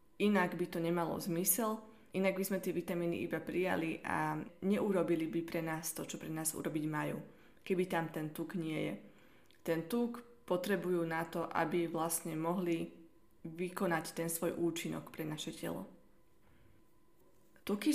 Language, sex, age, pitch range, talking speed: Slovak, female, 20-39, 170-195 Hz, 150 wpm